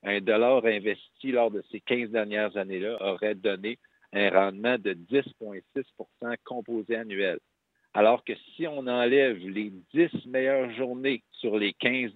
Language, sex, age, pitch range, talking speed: French, male, 50-69, 105-135 Hz, 145 wpm